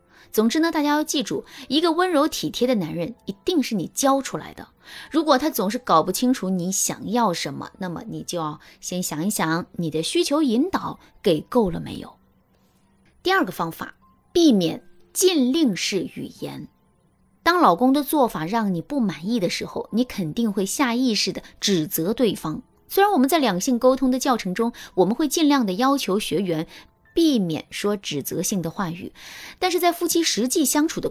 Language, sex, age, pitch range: Chinese, female, 20-39, 180-295 Hz